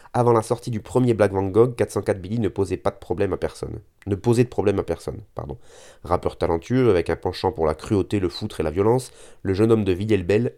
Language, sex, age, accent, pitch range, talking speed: French, male, 30-49, French, 90-115 Hz, 245 wpm